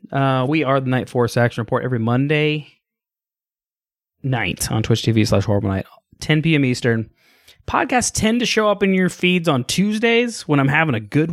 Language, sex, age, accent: English, male, 20-39, American